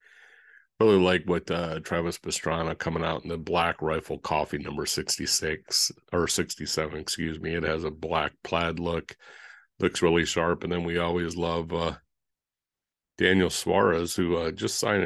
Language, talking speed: English, 160 wpm